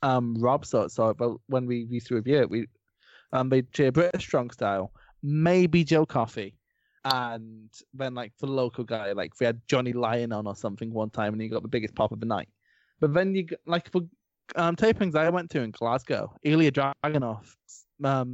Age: 20-39